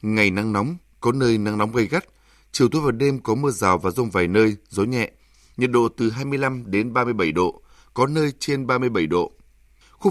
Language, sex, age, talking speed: Vietnamese, male, 20-39, 235 wpm